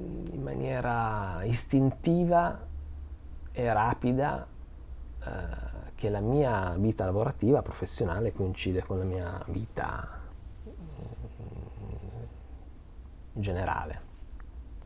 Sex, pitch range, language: male, 80-110 Hz, Italian